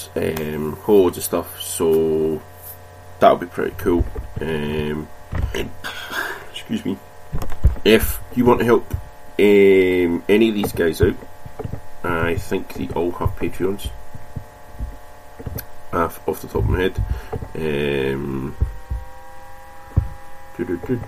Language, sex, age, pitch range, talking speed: English, male, 30-49, 80-90 Hz, 110 wpm